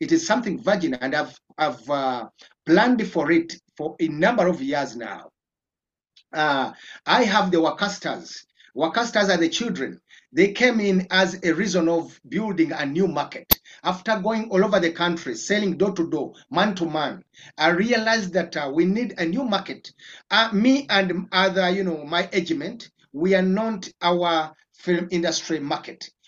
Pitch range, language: 170-220 Hz, English